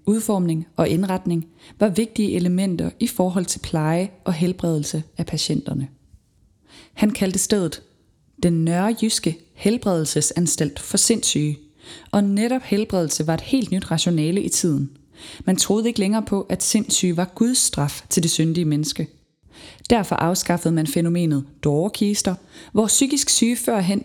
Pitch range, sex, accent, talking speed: 160-205 Hz, female, native, 140 wpm